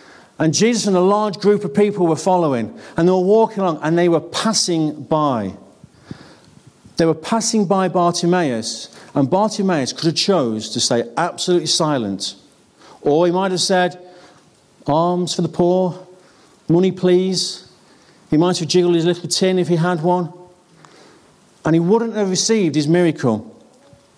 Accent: British